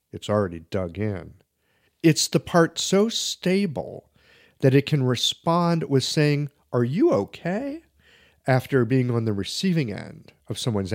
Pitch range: 105-150 Hz